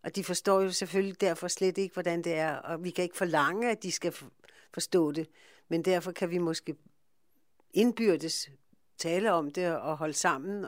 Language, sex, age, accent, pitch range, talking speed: Danish, female, 60-79, native, 160-195 Hz, 185 wpm